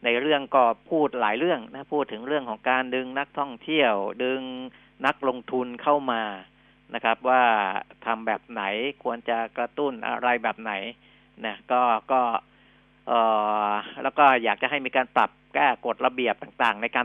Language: Thai